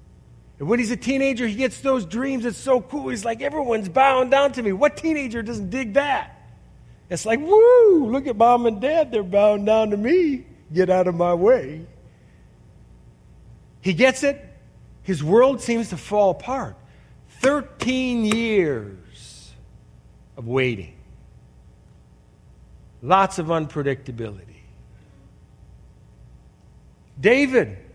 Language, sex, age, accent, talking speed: English, male, 50-69, American, 125 wpm